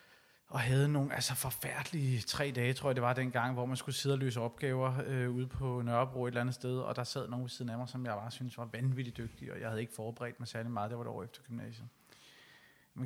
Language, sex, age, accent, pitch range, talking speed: Danish, male, 30-49, native, 115-135 Hz, 260 wpm